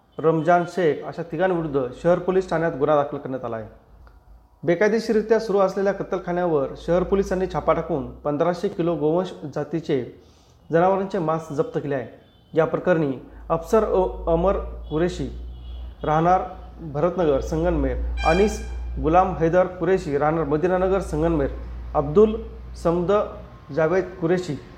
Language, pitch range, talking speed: Marathi, 150-185 Hz, 115 wpm